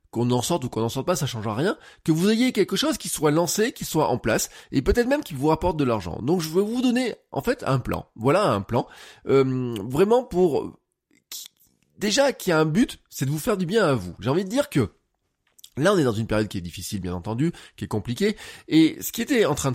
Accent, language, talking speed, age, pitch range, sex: French, French, 260 wpm, 20-39, 115-180 Hz, male